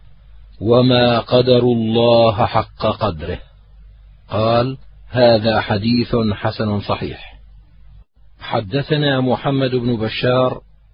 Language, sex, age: Arabic, male, 40-59